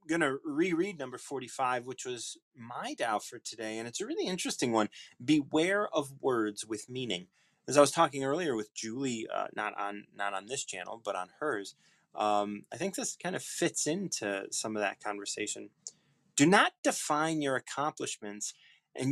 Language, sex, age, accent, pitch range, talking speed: English, male, 30-49, American, 120-165 Hz, 175 wpm